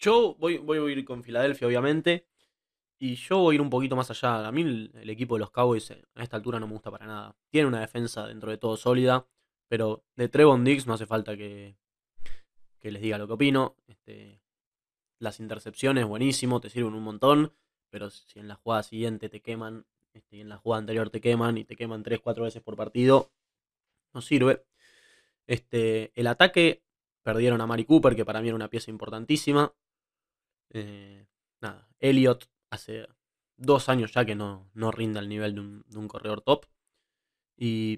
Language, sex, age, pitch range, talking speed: Spanish, male, 20-39, 110-130 Hz, 190 wpm